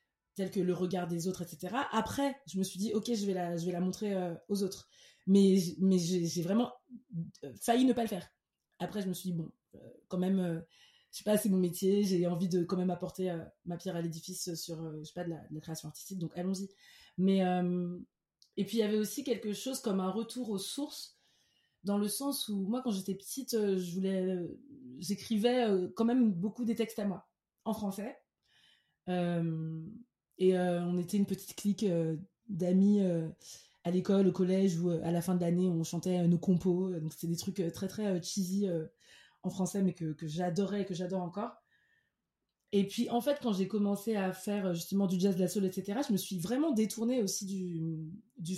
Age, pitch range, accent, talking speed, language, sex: 20-39, 175-210 Hz, French, 225 wpm, French, female